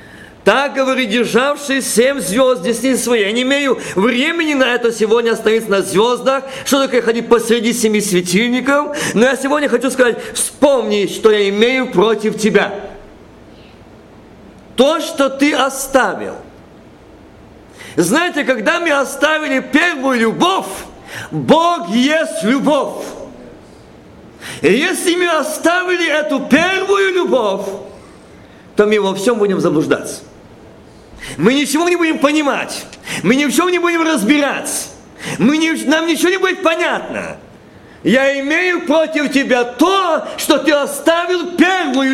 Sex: male